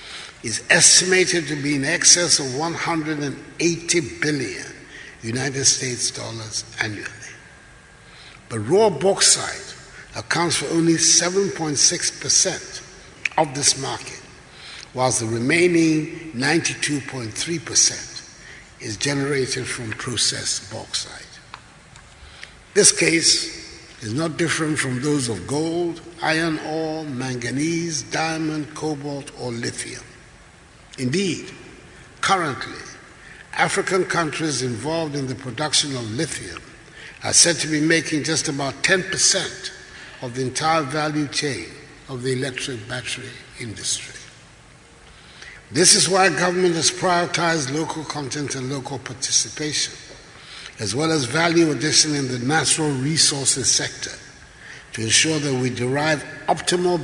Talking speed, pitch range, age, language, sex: 110 wpm, 130-165 Hz, 60-79, English, male